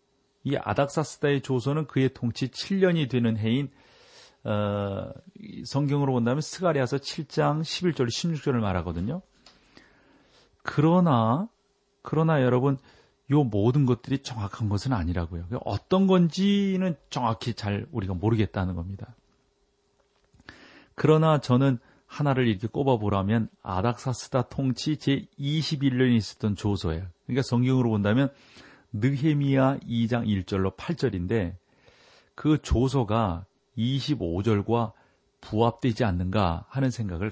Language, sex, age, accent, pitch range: Korean, male, 40-59, native, 105-140 Hz